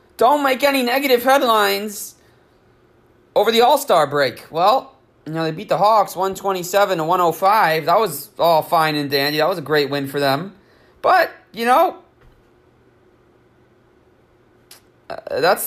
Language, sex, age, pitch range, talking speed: English, male, 30-49, 150-230 Hz, 135 wpm